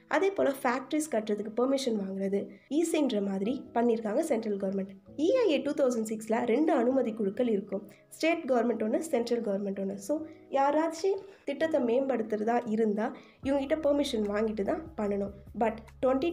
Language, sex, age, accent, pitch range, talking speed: Tamil, female, 20-39, native, 215-285 Hz, 130 wpm